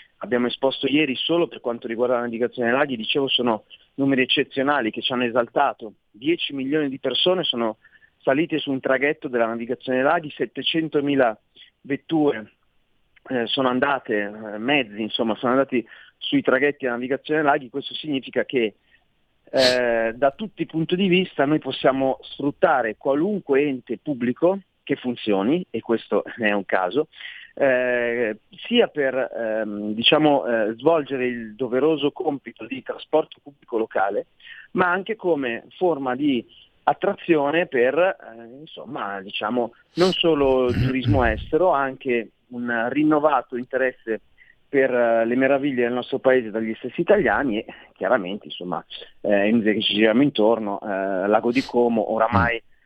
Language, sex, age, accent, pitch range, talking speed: Italian, male, 40-59, native, 115-145 Hz, 145 wpm